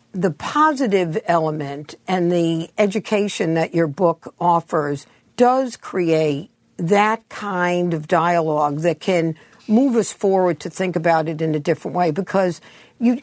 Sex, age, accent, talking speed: female, 60-79, American, 140 wpm